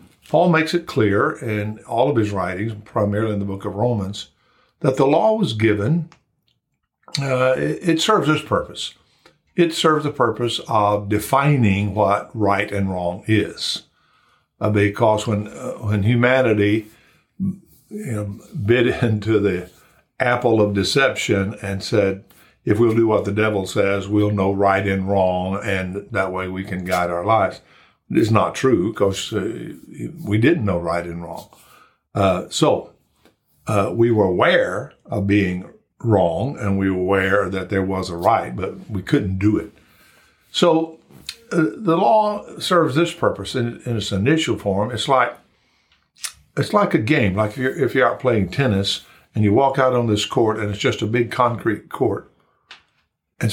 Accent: American